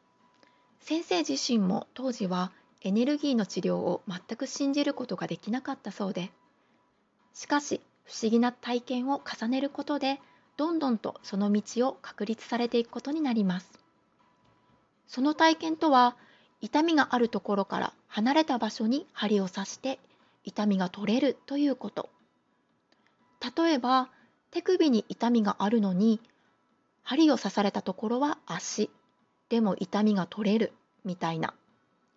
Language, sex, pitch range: Japanese, female, 205-275 Hz